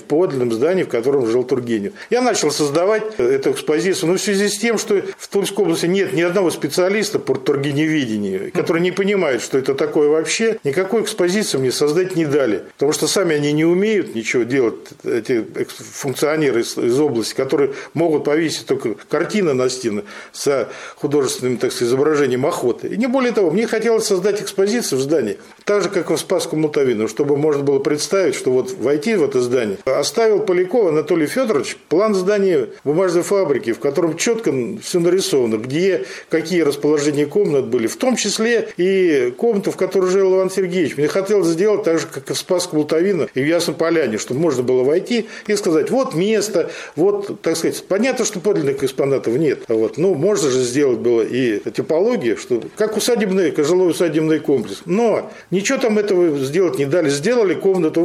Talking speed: 180 wpm